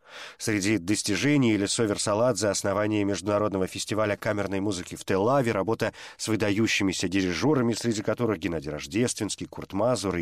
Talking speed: 125 wpm